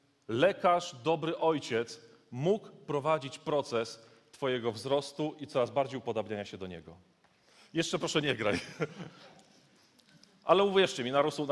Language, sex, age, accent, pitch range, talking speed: Polish, male, 30-49, native, 135-180 Hz, 125 wpm